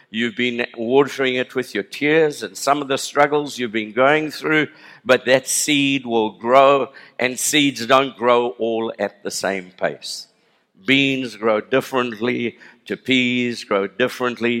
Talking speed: 150 wpm